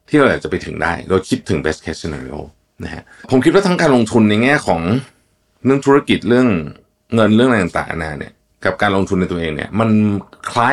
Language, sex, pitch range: Thai, male, 85-120 Hz